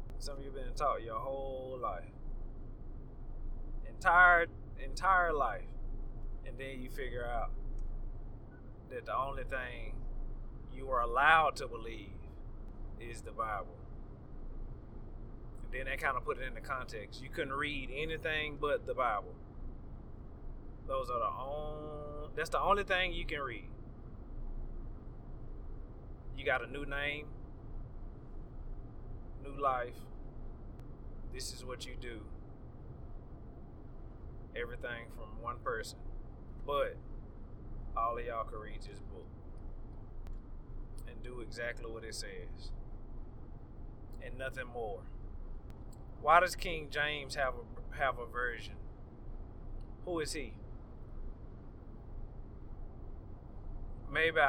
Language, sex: English, male